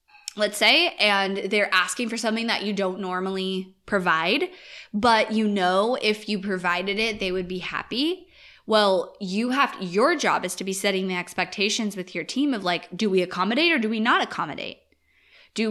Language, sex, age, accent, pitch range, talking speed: English, female, 20-39, American, 185-225 Hz, 185 wpm